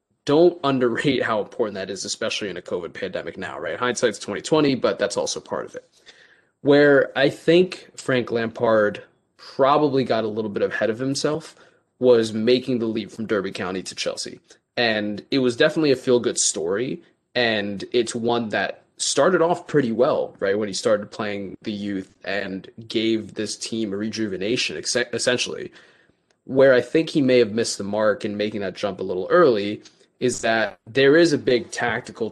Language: English